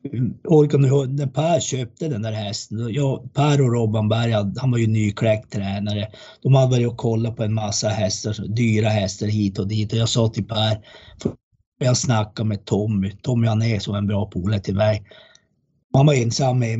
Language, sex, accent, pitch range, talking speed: Swedish, male, native, 105-125 Hz, 180 wpm